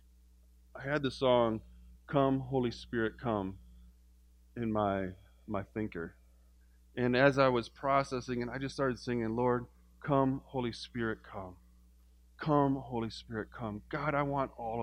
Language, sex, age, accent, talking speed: English, male, 40-59, American, 140 wpm